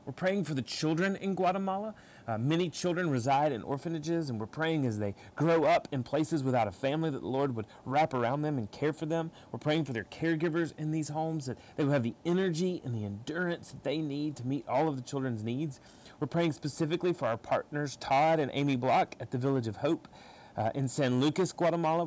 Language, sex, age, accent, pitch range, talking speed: English, male, 30-49, American, 125-160 Hz, 225 wpm